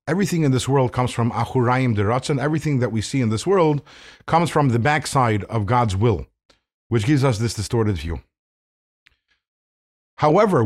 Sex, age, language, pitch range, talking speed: male, 50-69, English, 110-160 Hz, 165 wpm